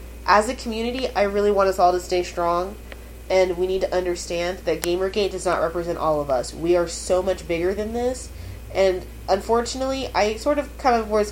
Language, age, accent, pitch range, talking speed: English, 30-49, American, 160-195 Hz, 205 wpm